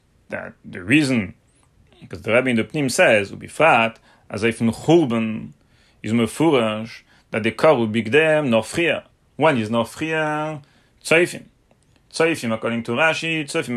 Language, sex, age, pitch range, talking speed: English, male, 30-49, 110-140 Hz, 125 wpm